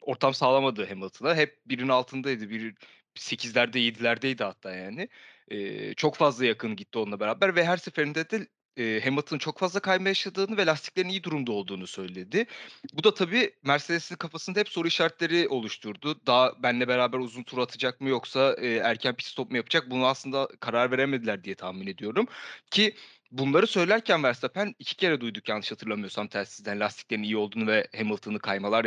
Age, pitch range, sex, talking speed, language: 30-49, 110-170 Hz, male, 165 wpm, Turkish